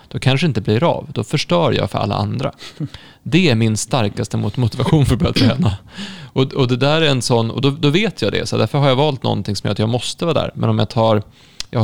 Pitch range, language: 105-130 Hz, Swedish